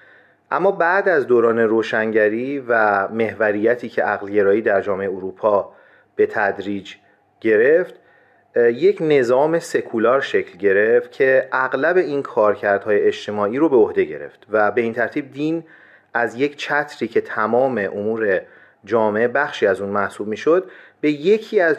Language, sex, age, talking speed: Persian, male, 40-59, 140 wpm